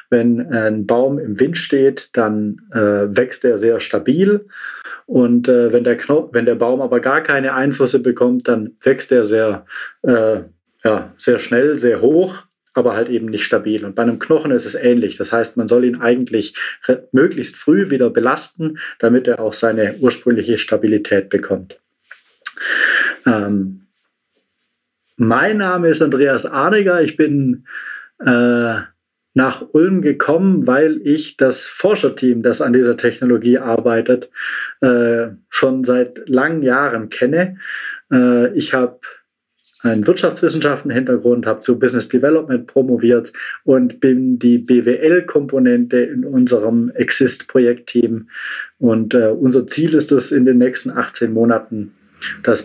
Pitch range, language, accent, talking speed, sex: 115-135 Hz, German, German, 140 wpm, male